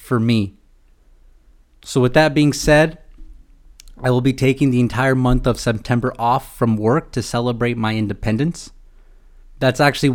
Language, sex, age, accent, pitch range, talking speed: English, male, 20-39, American, 110-140 Hz, 150 wpm